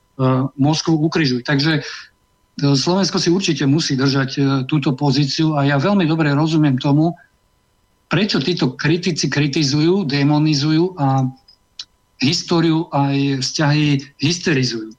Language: Slovak